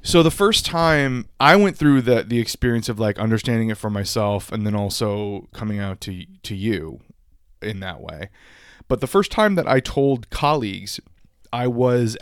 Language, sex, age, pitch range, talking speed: English, male, 20-39, 100-120 Hz, 180 wpm